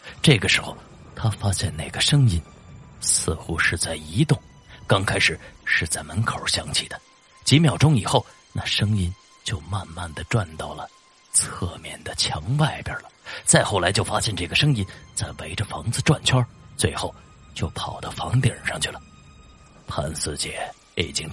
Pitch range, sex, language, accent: 80-130 Hz, male, Chinese, native